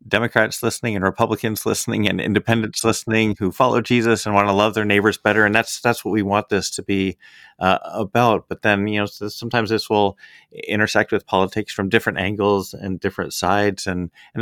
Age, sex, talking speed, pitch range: 30-49, male, 195 wpm, 100-115 Hz